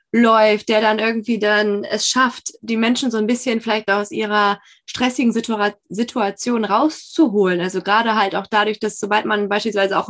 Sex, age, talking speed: female, 20-39, 165 wpm